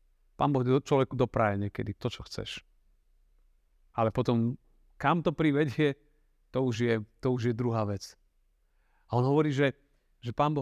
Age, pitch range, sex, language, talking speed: 40-59, 100-145 Hz, male, Slovak, 165 wpm